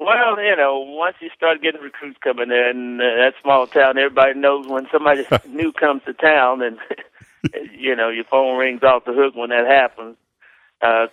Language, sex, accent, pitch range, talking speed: English, male, American, 120-140 Hz, 190 wpm